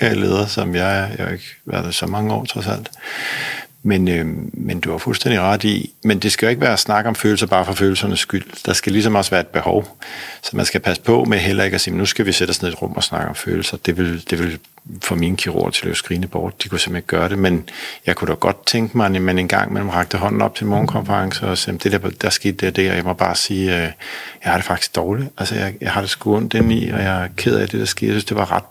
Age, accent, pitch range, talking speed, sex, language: 50-69, native, 95-110 Hz, 280 wpm, male, Danish